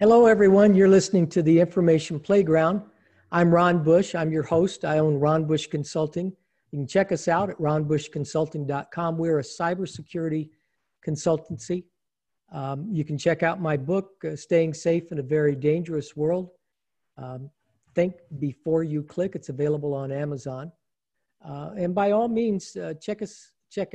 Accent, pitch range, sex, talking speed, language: American, 145-170 Hz, male, 155 wpm, English